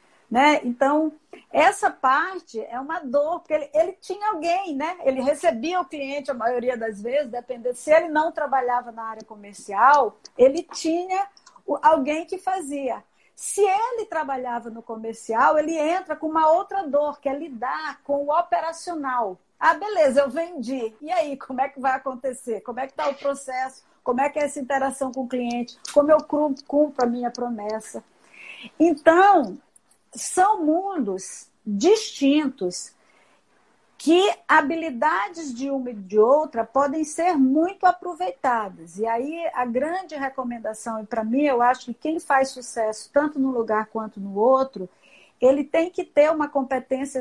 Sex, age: female, 50-69